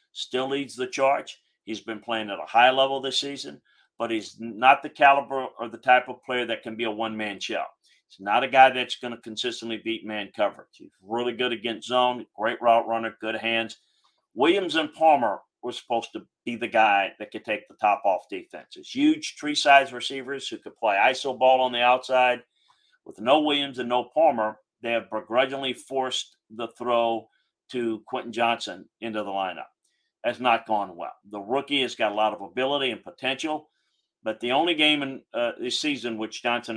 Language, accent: English, American